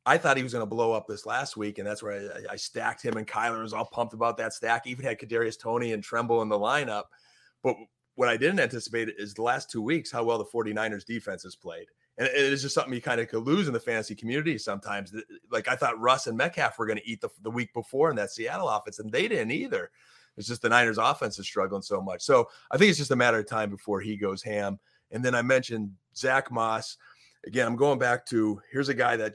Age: 30-49